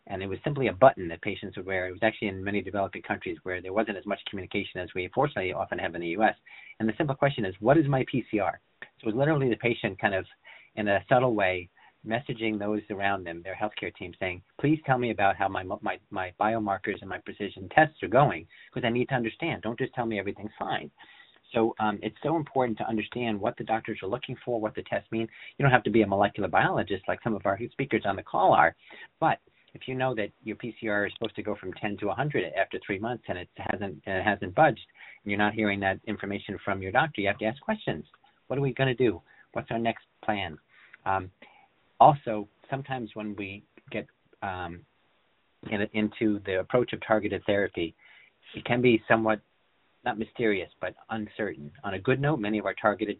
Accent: American